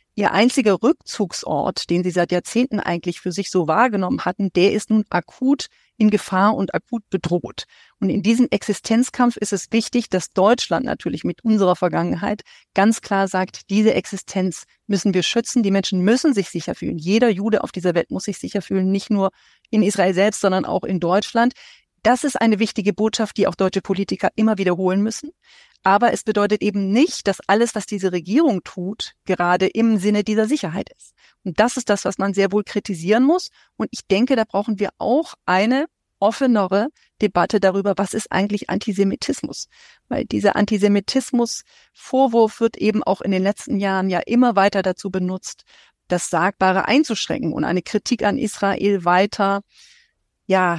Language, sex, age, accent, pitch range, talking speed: German, female, 40-59, German, 190-230 Hz, 175 wpm